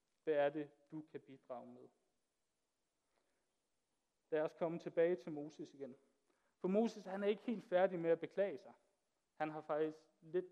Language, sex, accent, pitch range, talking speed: Danish, male, native, 150-195 Hz, 165 wpm